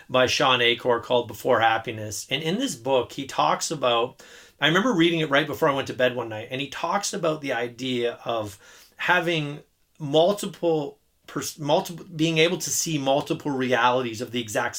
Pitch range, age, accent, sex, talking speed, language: 125-160 Hz, 30-49, American, male, 180 wpm, English